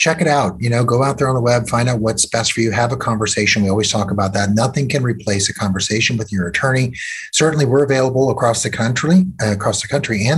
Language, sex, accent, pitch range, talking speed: English, male, American, 100-135 Hz, 255 wpm